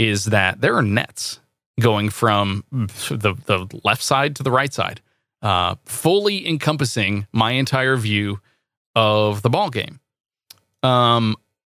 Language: English